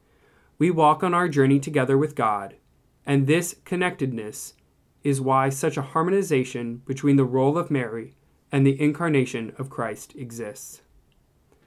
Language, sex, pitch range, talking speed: English, male, 125-155 Hz, 140 wpm